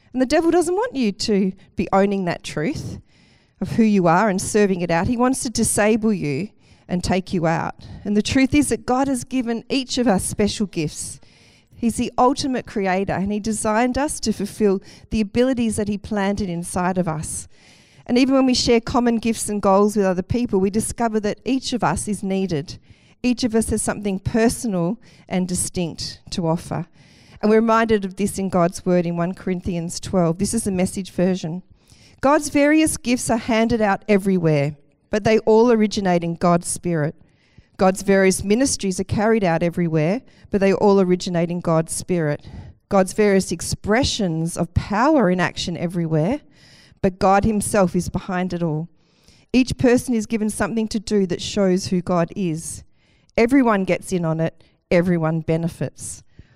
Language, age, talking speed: English, 40-59, 180 wpm